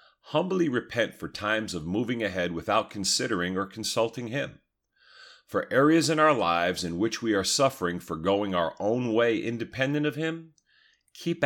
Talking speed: 160 wpm